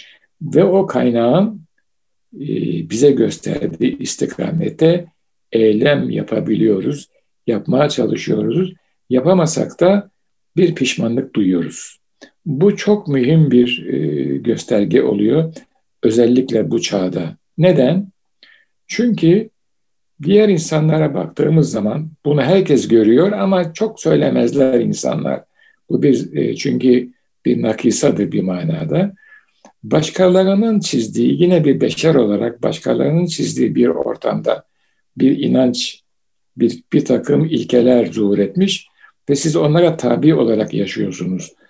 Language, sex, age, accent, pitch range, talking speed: Turkish, male, 60-79, native, 125-185 Hz, 100 wpm